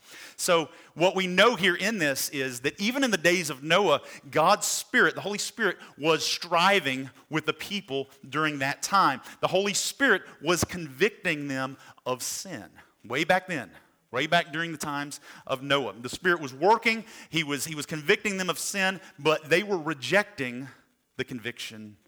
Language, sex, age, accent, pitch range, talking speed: English, male, 40-59, American, 135-195 Hz, 170 wpm